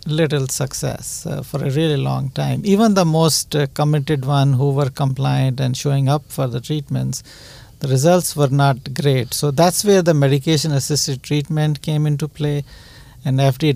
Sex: male